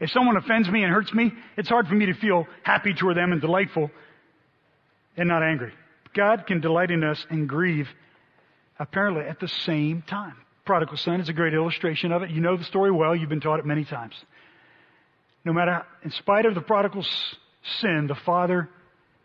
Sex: male